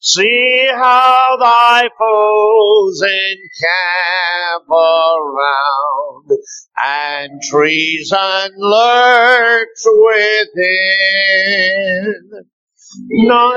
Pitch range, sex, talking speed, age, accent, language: 190-250 Hz, male, 50 wpm, 50-69, American, English